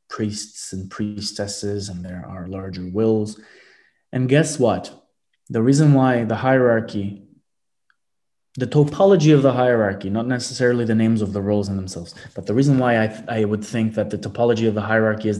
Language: English